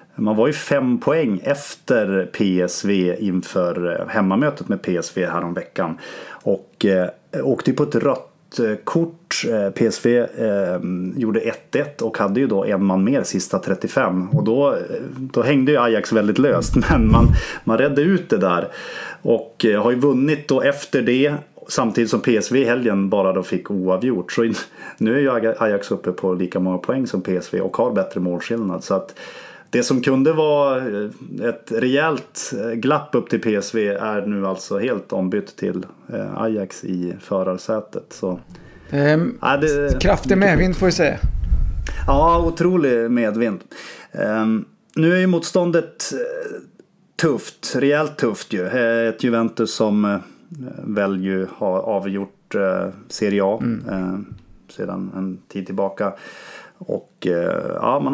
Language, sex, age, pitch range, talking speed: English, male, 30-49, 95-140 Hz, 135 wpm